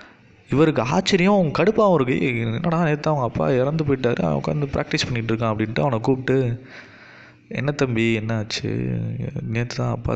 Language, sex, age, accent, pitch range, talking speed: English, male, 20-39, Indian, 110-140 Hz, 175 wpm